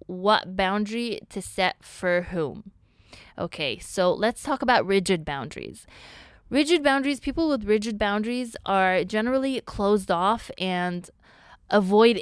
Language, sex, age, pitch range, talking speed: English, female, 20-39, 175-210 Hz, 125 wpm